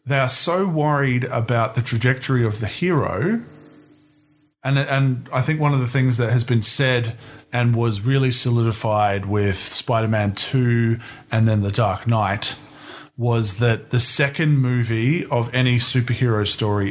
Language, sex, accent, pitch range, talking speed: English, male, Australian, 110-145 Hz, 155 wpm